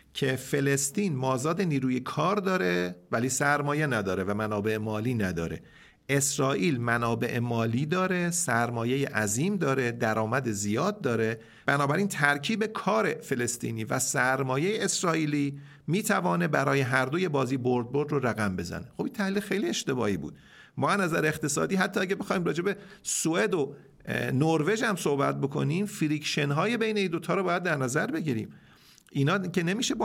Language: Persian